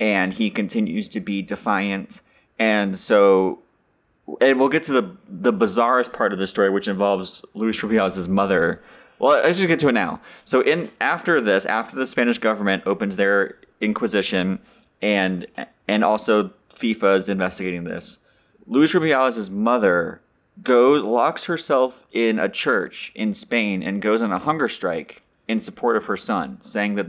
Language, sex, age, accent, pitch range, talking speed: English, male, 30-49, American, 95-110 Hz, 160 wpm